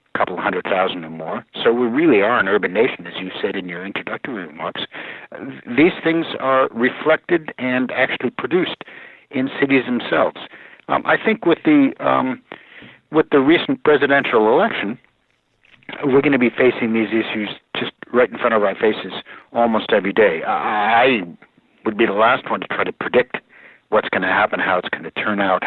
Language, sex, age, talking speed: English, male, 60-79, 185 wpm